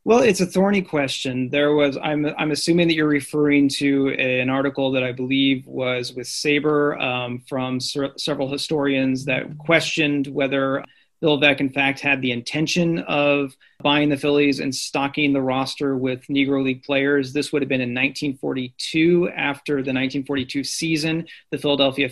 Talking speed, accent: 165 wpm, American